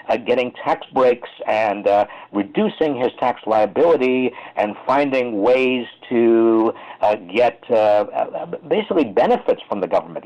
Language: English